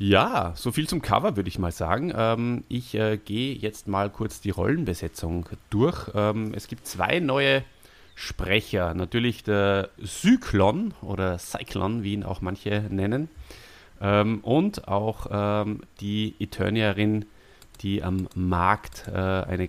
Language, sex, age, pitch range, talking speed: German, male, 30-49, 95-110 Hz, 140 wpm